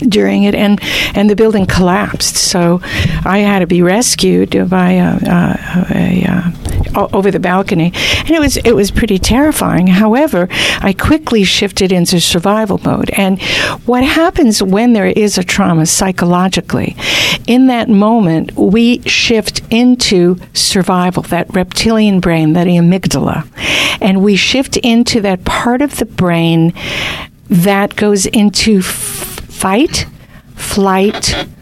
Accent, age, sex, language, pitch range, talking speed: American, 60-79, female, English, 175-215 Hz, 130 wpm